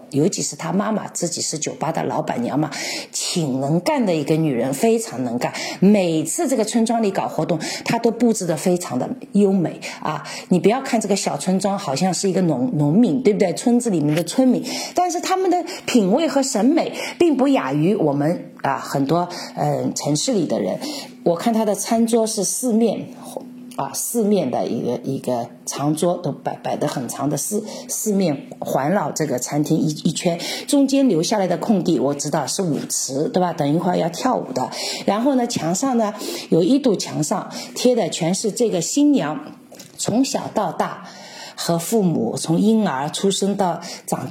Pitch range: 165-230 Hz